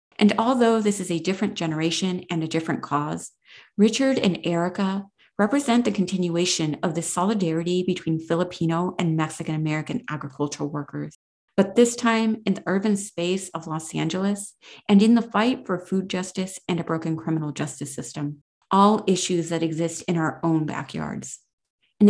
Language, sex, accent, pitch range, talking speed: English, female, American, 160-195 Hz, 155 wpm